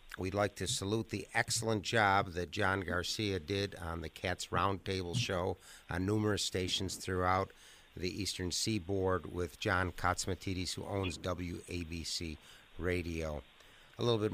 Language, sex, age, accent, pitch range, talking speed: English, male, 60-79, American, 90-105 Hz, 140 wpm